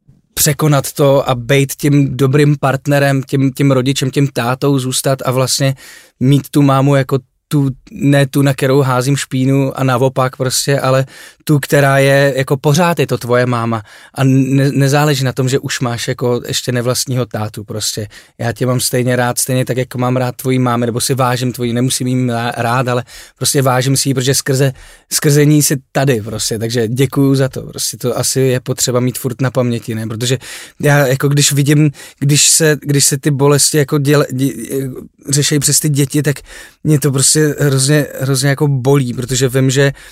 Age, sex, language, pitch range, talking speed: 20-39, male, Czech, 130-145 Hz, 185 wpm